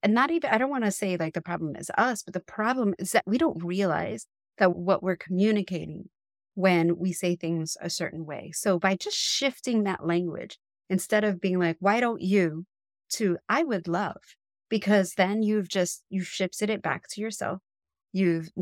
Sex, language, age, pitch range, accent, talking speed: female, English, 30-49, 170-215 Hz, American, 195 wpm